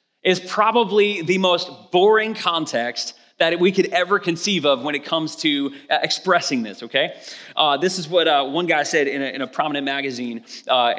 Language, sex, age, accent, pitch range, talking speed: English, male, 30-49, American, 150-195 Hz, 180 wpm